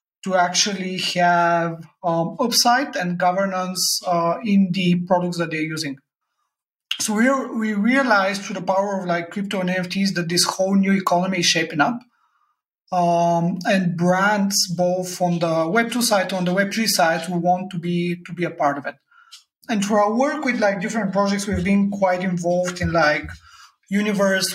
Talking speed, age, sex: 180 wpm, 30-49, male